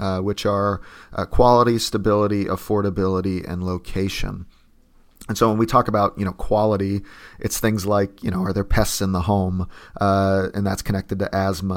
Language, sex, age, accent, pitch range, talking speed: English, male, 30-49, American, 95-105 Hz, 180 wpm